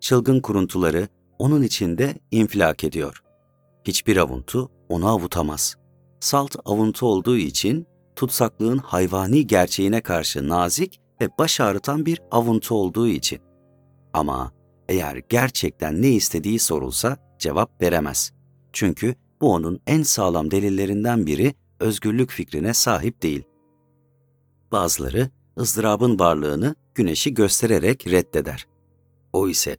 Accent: native